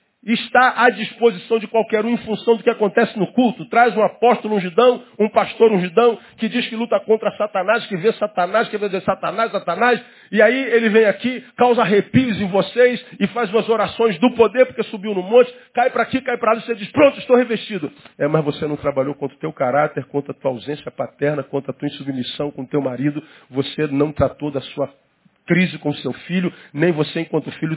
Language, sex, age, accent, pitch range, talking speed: Portuguese, male, 50-69, Brazilian, 155-235 Hz, 215 wpm